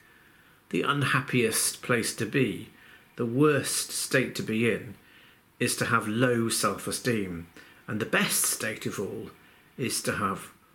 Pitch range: 110-140 Hz